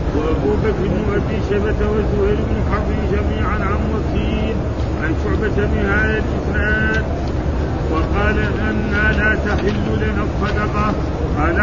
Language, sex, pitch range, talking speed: Arabic, male, 70-80 Hz, 115 wpm